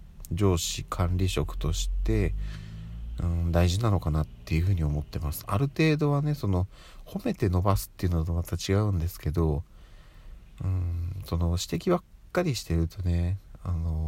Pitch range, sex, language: 85-110 Hz, male, Japanese